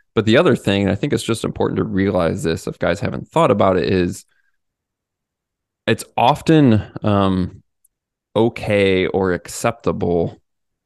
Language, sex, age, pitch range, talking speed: English, male, 20-39, 90-110 Hz, 145 wpm